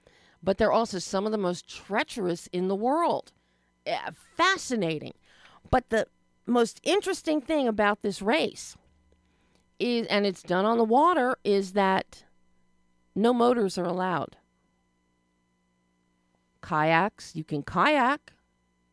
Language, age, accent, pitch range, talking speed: English, 40-59, American, 165-235 Hz, 120 wpm